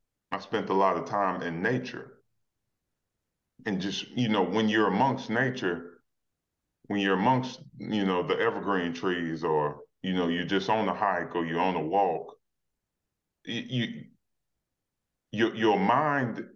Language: English